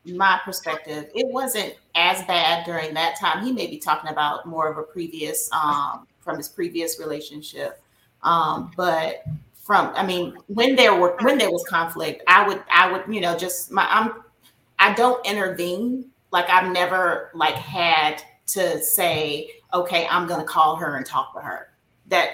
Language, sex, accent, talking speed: English, female, American, 170 wpm